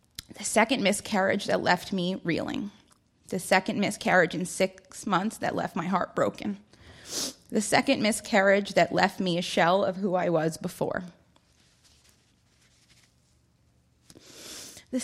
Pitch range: 180-230 Hz